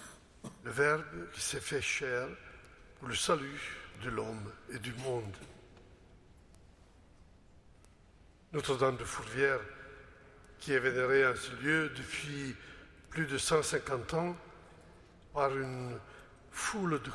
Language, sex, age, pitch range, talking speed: French, male, 60-79, 100-155 Hz, 110 wpm